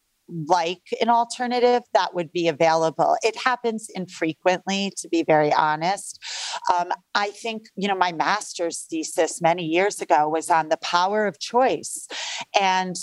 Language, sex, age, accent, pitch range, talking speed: English, female, 40-59, American, 170-205 Hz, 145 wpm